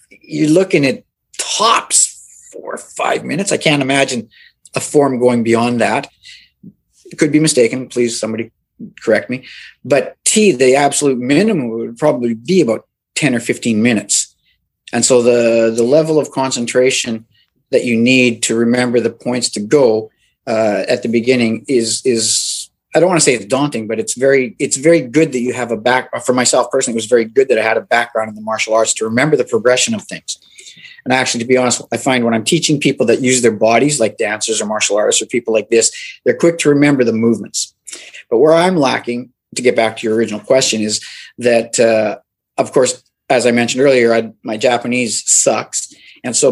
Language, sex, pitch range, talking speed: English, male, 115-145 Hz, 200 wpm